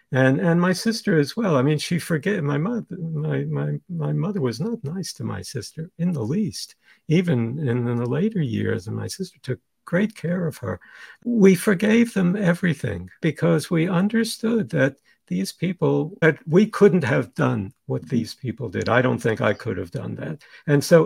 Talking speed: 190 wpm